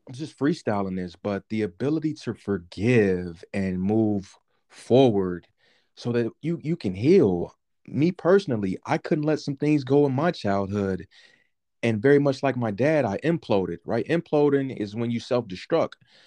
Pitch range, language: 100-140 Hz, English